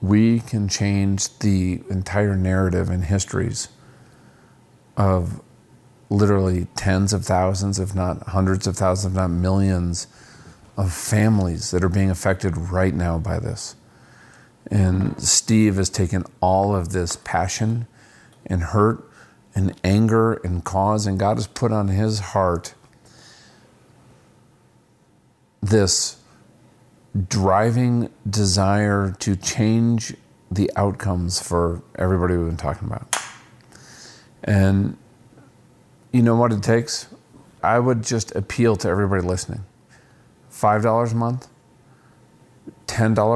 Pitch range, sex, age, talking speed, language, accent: 95-115 Hz, male, 40-59, 115 wpm, English, American